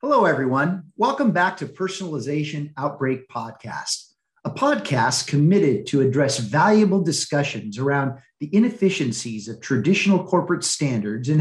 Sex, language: male, English